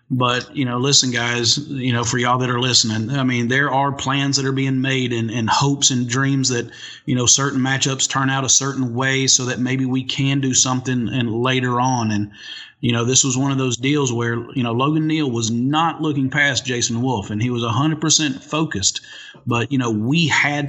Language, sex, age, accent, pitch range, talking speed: English, male, 30-49, American, 120-135 Hz, 225 wpm